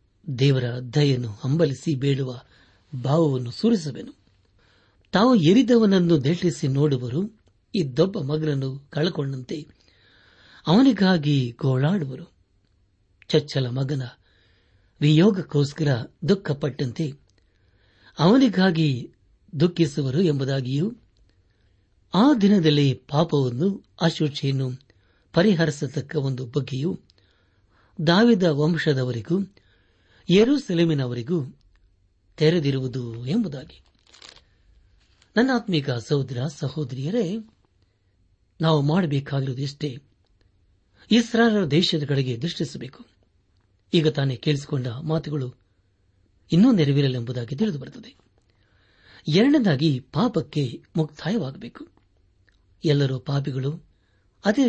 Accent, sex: native, male